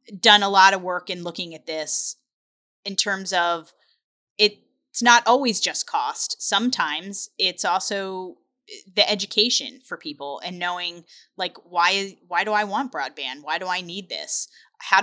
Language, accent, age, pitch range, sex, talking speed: English, American, 10-29, 175-220 Hz, female, 155 wpm